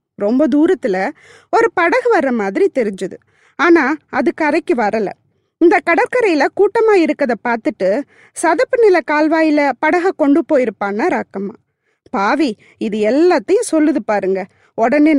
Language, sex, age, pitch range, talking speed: Tamil, female, 20-39, 250-355 Hz, 115 wpm